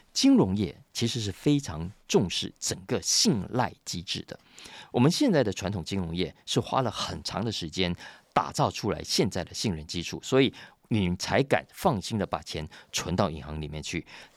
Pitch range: 85-115 Hz